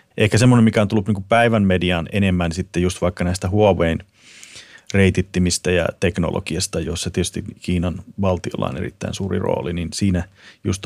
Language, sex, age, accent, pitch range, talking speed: Finnish, male, 30-49, native, 85-100 Hz, 155 wpm